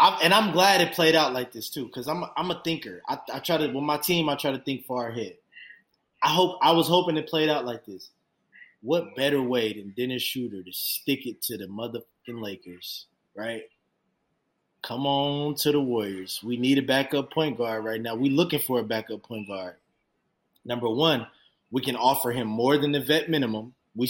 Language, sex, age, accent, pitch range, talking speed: English, male, 20-39, American, 125-175 Hz, 210 wpm